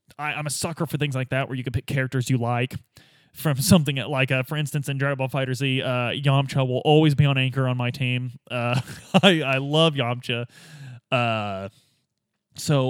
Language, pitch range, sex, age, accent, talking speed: English, 125-150 Hz, male, 20-39, American, 190 wpm